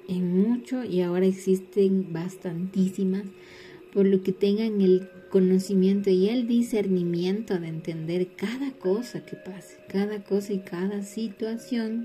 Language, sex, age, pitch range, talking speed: Spanish, female, 30-49, 175-195 Hz, 130 wpm